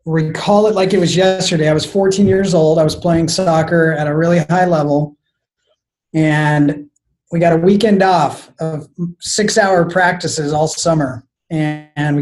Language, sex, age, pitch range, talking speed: English, male, 30-49, 155-185 Hz, 165 wpm